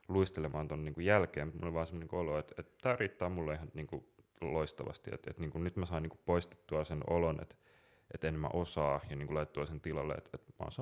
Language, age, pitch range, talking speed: Finnish, 30-49, 75-85 Hz, 215 wpm